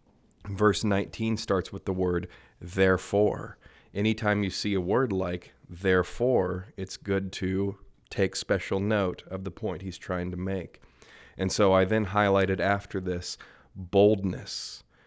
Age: 30-49